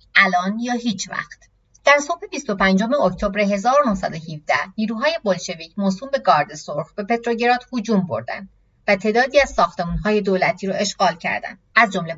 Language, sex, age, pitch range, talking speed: Persian, female, 30-49, 180-245 Hz, 145 wpm